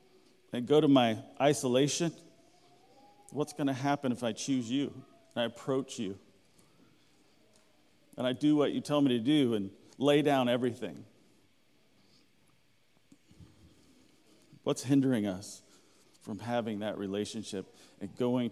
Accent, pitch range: American, 105-135 Hz